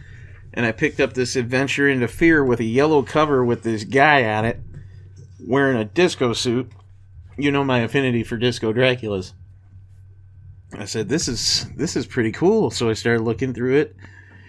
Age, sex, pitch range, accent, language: 40-59, male, 100-135 Hz, American, Japanese